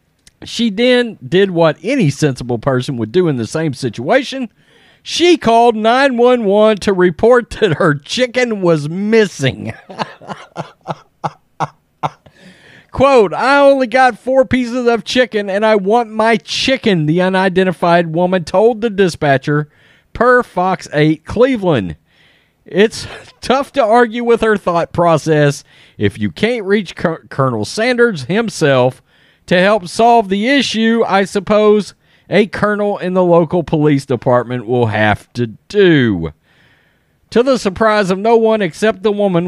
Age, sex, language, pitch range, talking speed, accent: 40-59, male, English, 150-225 Hz, 135 wpm, American